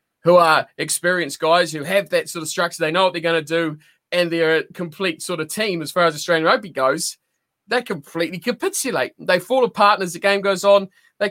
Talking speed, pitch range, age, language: 225 wpm, 170-220 Hz, 20-39, English